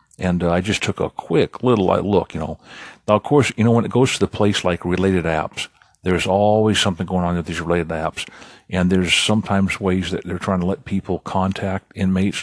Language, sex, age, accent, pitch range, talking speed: English, male, 50-69, American, 90-105 Hz, 225 wpm